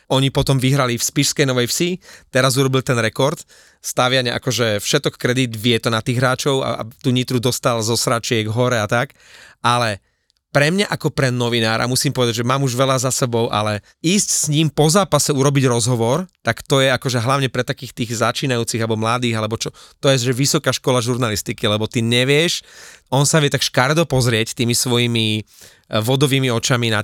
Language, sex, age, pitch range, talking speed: Slovak, male, 30-49, 120-140 Hz, 190 wpm